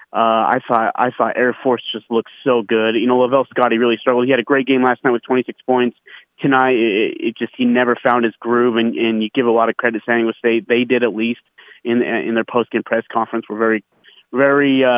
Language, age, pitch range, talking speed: English, 30-49, 115-125 Hz, 250 wpm